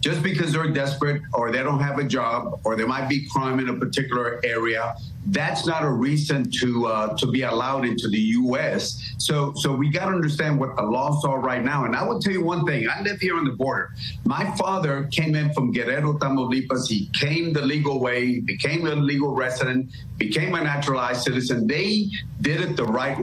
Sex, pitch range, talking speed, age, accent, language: male, 125-155 Hz, 210 wpm, 50-69, American, English